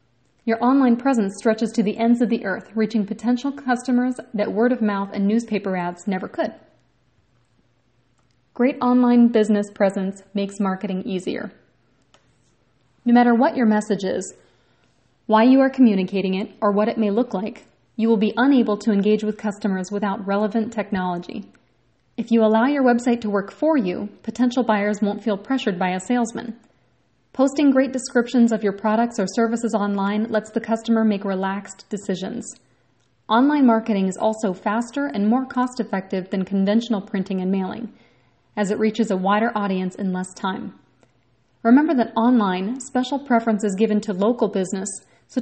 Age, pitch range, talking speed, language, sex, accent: 30-49, 195-235 Hz, 160 wpm, English, female, American